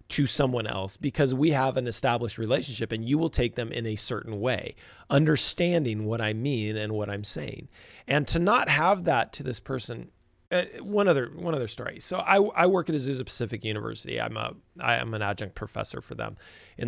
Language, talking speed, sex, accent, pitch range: English, 205 wpm, male, American, 105-150 Hz